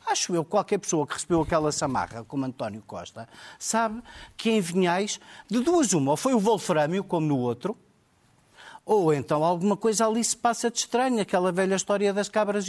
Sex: male